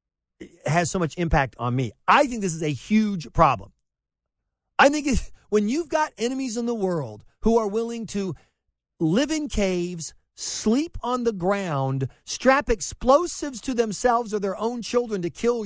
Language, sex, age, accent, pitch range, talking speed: English, male, 40-59, American, 155-235 Hz, 165 wpm